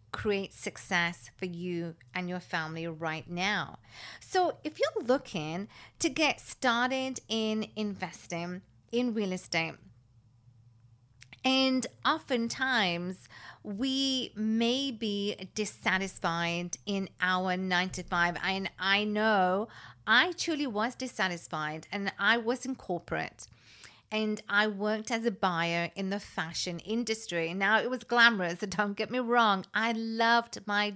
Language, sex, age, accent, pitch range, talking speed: English, female, 40-59, British, 180-235 Hz, 125 wpm